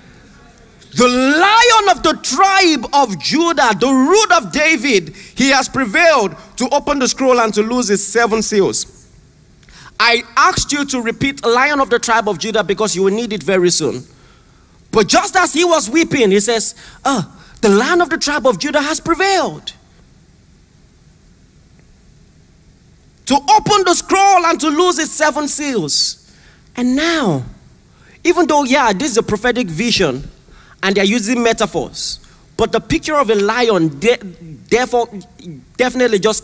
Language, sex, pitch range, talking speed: English, male, 210-285 Hz, 155 wpm